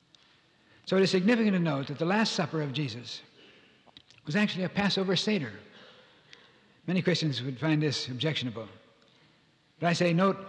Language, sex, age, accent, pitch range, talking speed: English, male, 60-79, American, 145-180 Hz, 155 wpm